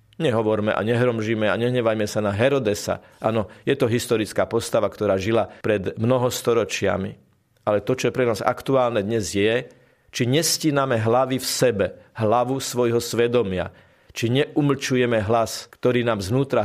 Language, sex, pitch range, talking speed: Slovak, male, 105-125 Hz, 150 wpm